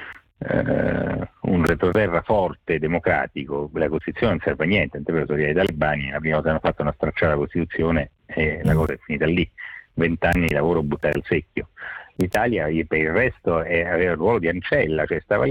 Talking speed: 180 wpm